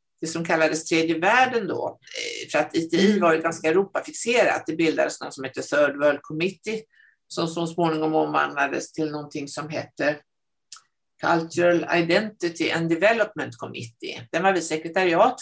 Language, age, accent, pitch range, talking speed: Swedish, 60-79, native, 155-245 Hz, 150 wpm